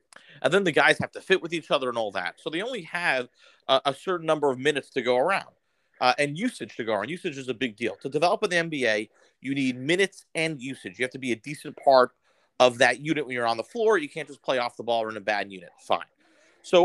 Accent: American